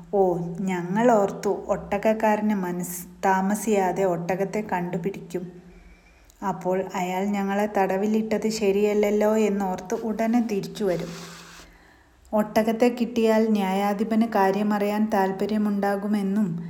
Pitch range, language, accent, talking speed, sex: 185-215 Hz, Malayalam, native, 75 wpm, female